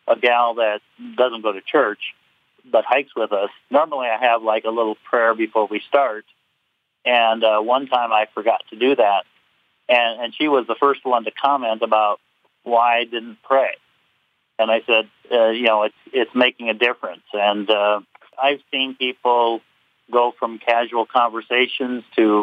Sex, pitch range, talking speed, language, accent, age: male, 110-125 Hz, 175 wpm, English, American, 50-69